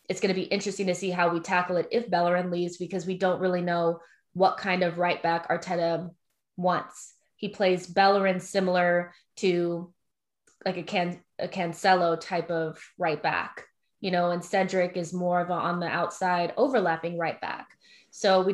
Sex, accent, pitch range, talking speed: female, American, 175-190 Hz, 180 wpm